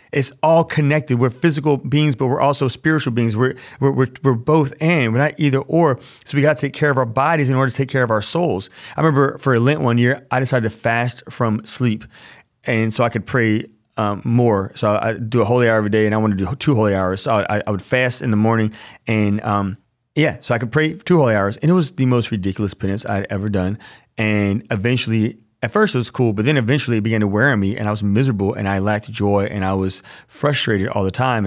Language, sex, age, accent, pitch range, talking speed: English, male, 30-49, American, 105-135 Hz, 255 wpm